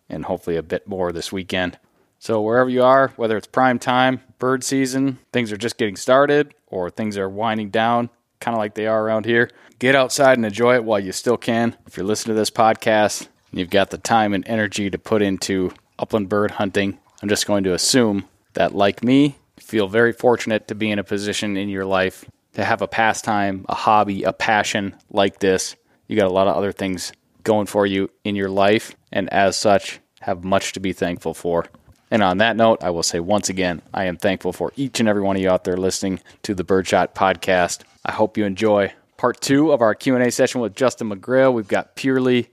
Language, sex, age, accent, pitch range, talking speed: English, male, 20-39, American, 100-120 Hz, 220 wpm